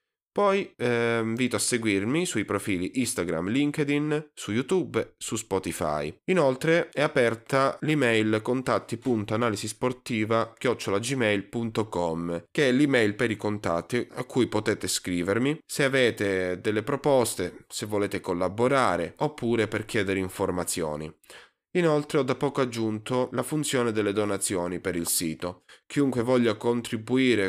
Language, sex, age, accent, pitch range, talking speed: Italian, male, 20-39, native, 95-125 Hz, 120 wpm